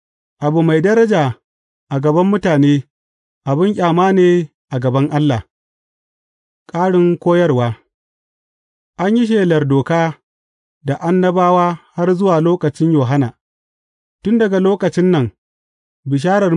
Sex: male